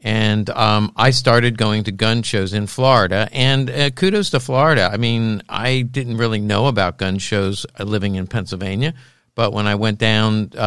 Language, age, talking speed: English, 50-69, 180 wpm